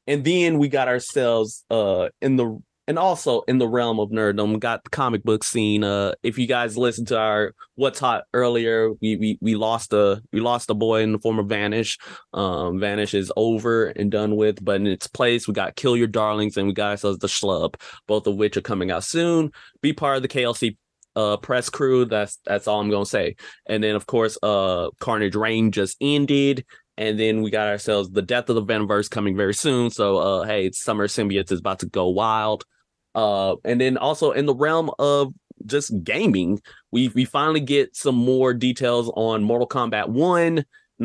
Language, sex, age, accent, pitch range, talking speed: English, male, 20-39, American, 105-130 Hz, 210 wpm